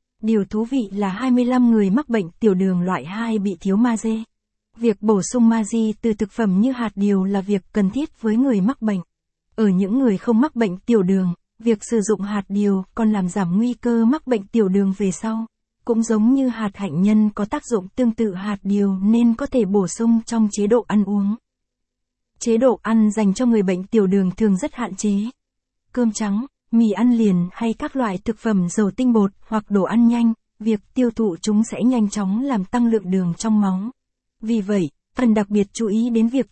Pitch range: 200-230 Hz